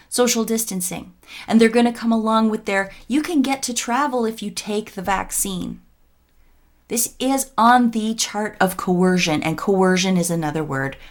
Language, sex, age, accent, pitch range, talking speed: English, female, 30-49, American, 165-225 Hz, 175 wpm